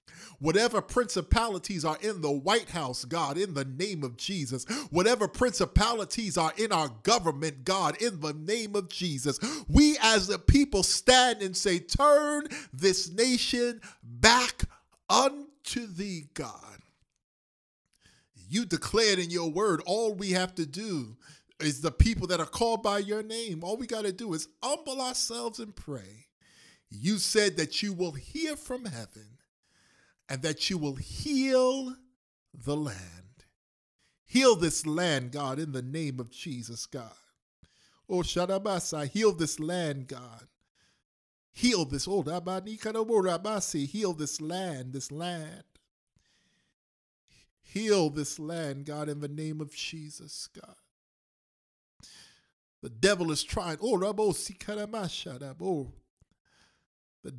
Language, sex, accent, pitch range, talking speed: English, male, American, 145-215 Hz, 130 wpm